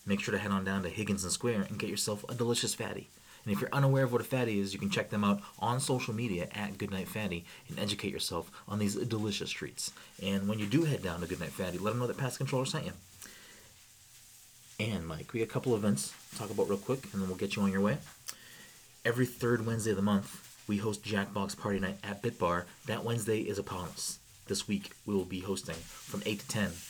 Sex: male